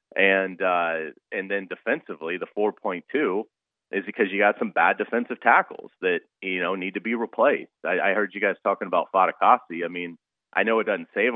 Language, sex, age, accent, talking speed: English, male, 30-49, American, 195 wpm